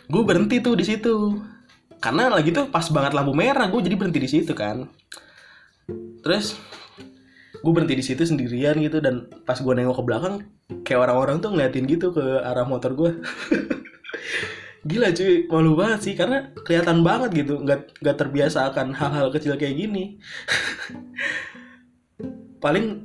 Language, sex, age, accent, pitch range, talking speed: Indonesian, male, 20-39, native, 125-180 Hz, 150 wpm